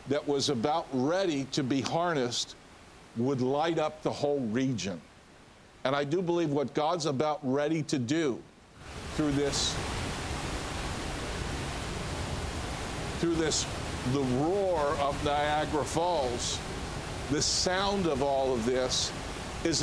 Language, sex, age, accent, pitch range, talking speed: English, male, 50-69, American, 140-185 Hz, 120 wpm